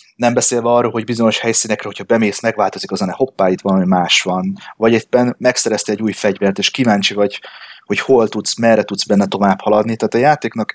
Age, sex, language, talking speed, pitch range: 20-39, male, Hungarian, 205 wpm, 100-135 Hz